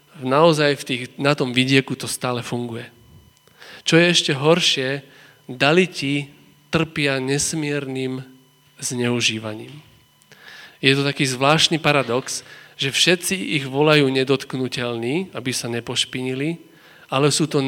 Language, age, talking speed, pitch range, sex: Slovak, 40-59, 110 wpm, 130-155 Hz, male